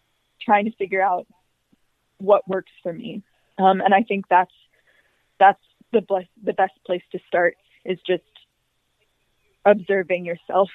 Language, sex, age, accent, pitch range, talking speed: English, female, 20-39, American, 190-220 Hz, 140 wpm